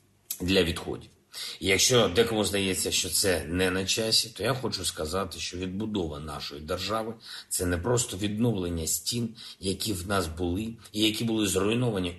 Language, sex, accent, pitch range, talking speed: Ukrainian, male, native, 95-115 Hz, 160 wpm